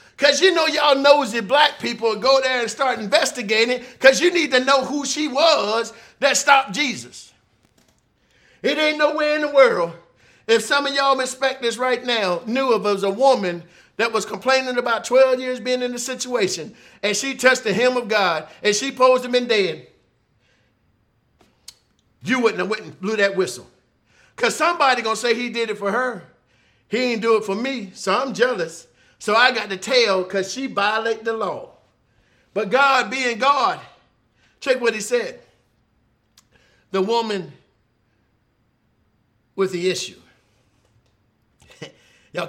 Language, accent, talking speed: English, American, 160 wpm